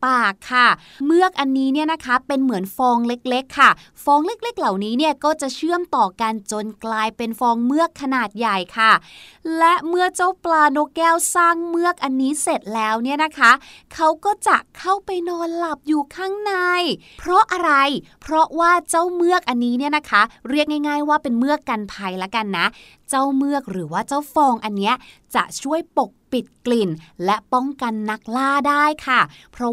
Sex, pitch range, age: female, 235-310 Hz, 20-39